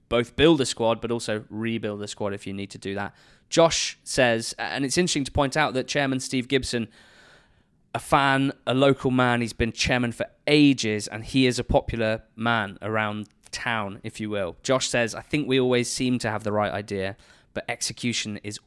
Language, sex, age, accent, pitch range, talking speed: English, male, 20-39, British, 110-130 Hz, 205 wpm